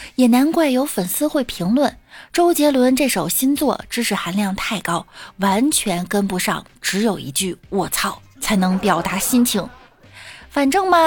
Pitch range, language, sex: 200-280 Hz, Chinese, female